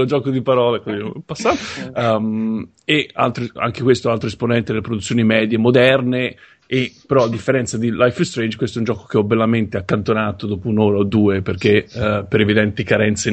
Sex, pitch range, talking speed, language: male, 105-125 Hz, 185 wpm, Italian